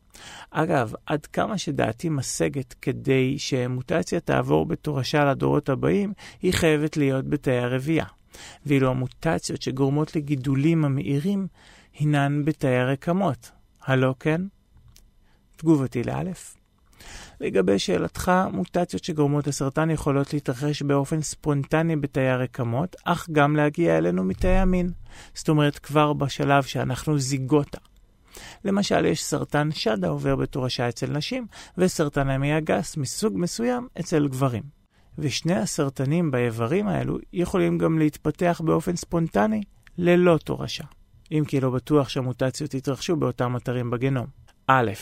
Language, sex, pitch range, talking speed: Hebrew, male, 130-160 Hz, 115 wpm